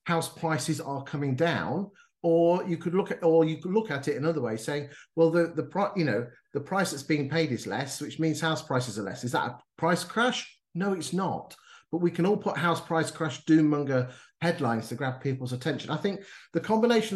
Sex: male